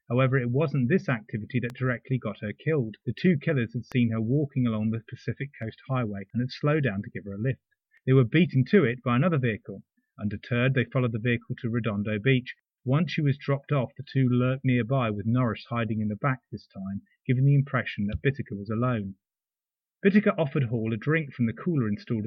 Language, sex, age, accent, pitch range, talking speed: English, male, 30-49, British, 110-140 Hz, 215 wpm